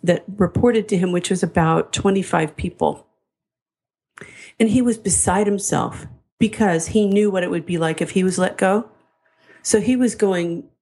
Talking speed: 170 wpm